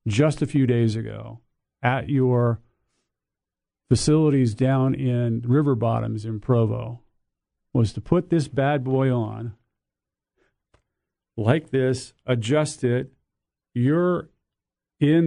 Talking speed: 105 wpm